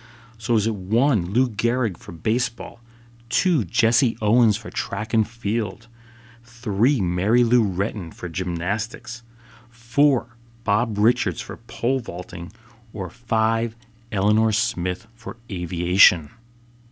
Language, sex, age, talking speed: English, male, 30-49, 115 wpm